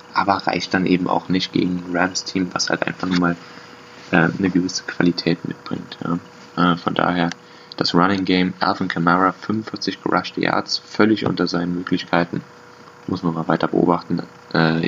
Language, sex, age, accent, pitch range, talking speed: German, male, 20-39, German, 85-95 Hz, 165 wpm